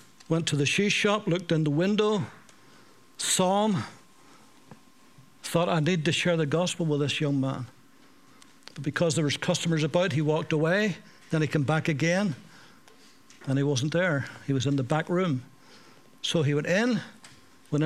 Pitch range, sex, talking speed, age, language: 155-195 Hz, male, 170 wpm, 60-79, English